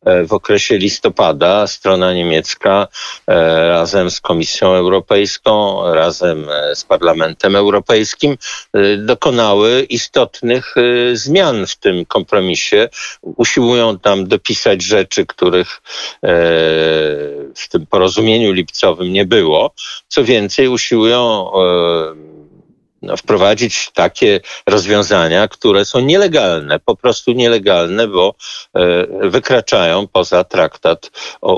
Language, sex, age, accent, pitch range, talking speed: Polish, male, 50-69, native, 85-105 Hz, 90 wpm